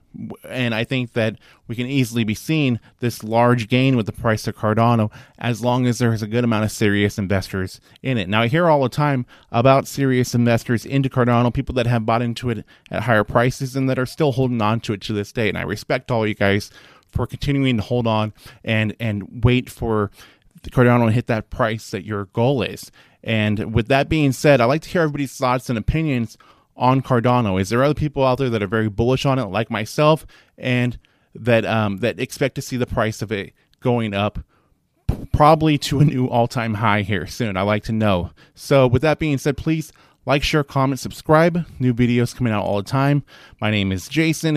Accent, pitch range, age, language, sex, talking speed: American, 110-135 Hz, 20-39, English, male, 215 wpm